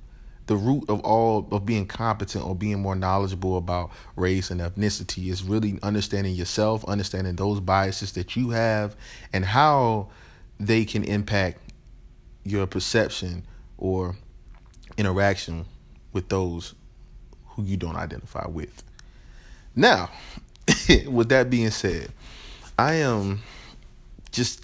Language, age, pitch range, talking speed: English, 30-49, 95-110 Hz, 120 wpm